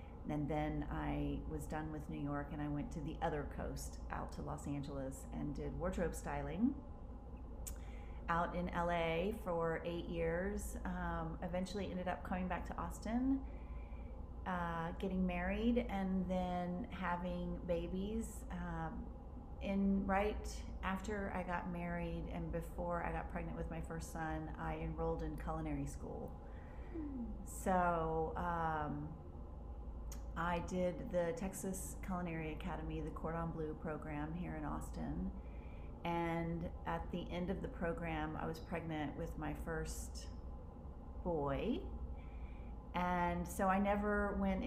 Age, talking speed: 30-49, 135 wpm